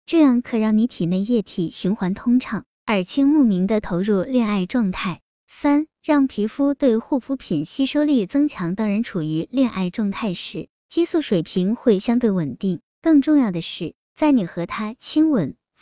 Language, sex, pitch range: Chinese, male, 190-255 Hz